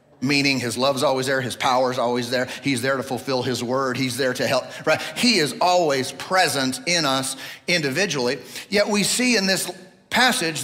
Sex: male